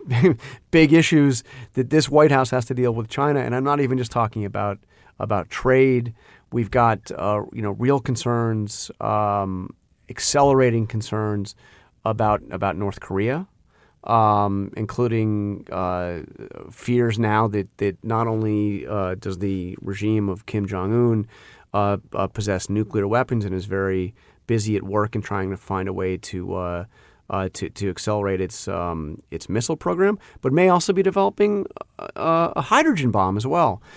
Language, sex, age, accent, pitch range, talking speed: English, male, 30-49, American, 100-140 Hz, 155 wpm